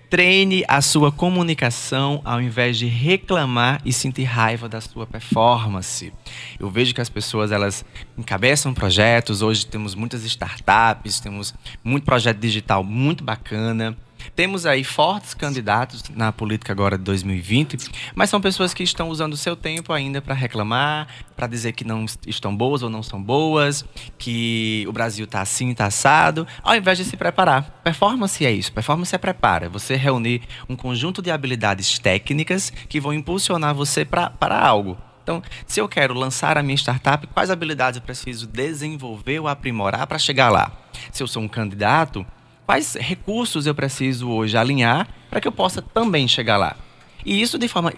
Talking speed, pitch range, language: 170 wpm, 110-150 Hz, Portuguese